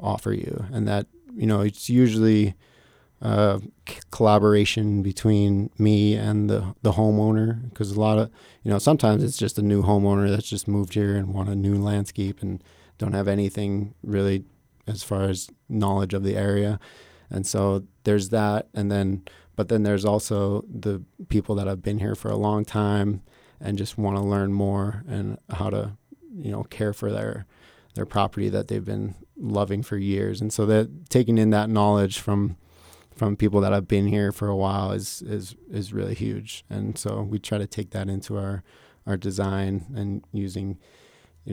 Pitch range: 100-105 Hz